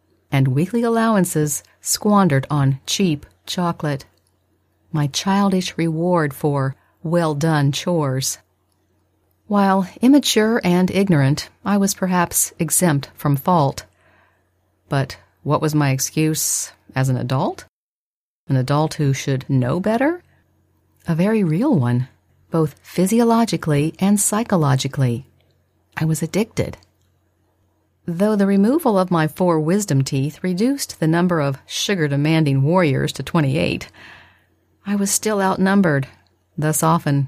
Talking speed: 115 wpm